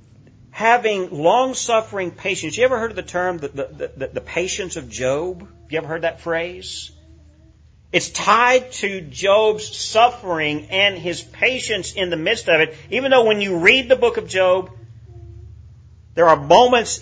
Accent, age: American, 40-59